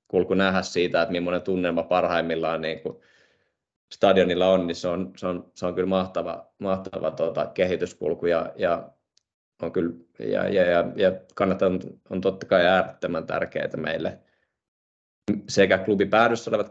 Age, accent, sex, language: 20-39, native, male, Finnish